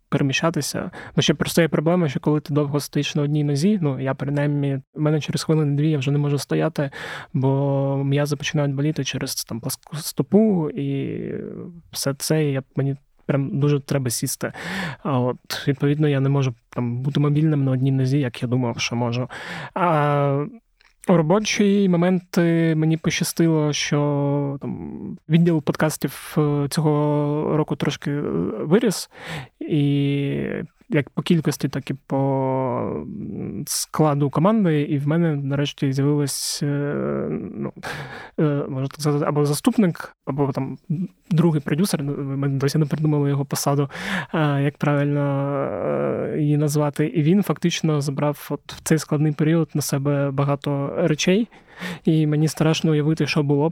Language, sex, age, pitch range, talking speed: Ukrainian, male, 20-39, 140-160 Hz, 140 wpm